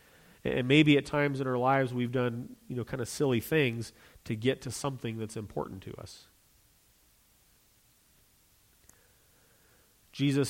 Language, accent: English, American